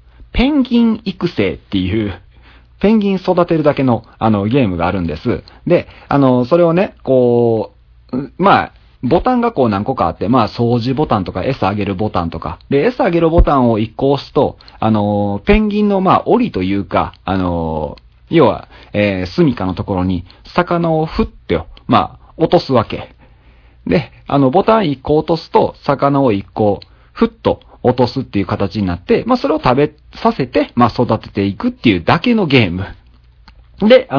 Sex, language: male, Japanese